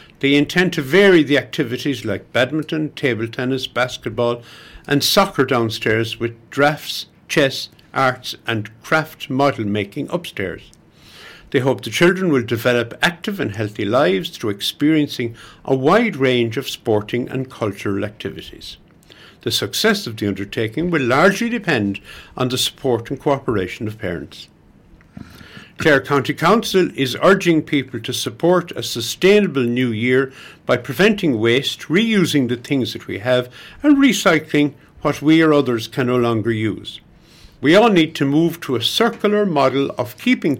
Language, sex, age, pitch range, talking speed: English, male, 60-79, 120-155 Hz, 150 wpm